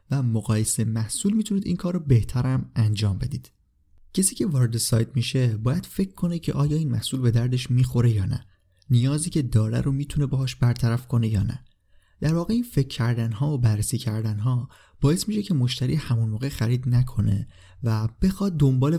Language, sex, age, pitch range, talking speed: Persian, male, 30-49, 115-145 Hz, 180 wpm